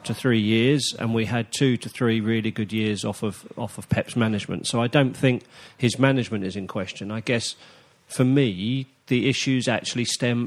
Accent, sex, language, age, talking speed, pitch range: British, male, English, 40-59, 200 wpm, 110-135 Hz